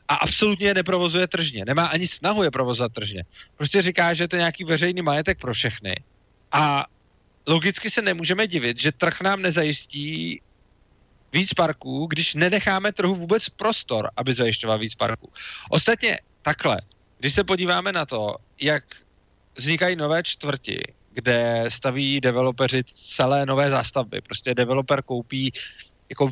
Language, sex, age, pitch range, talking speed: Slovak, male, 30-49, 130-180 Hz, 140 wpm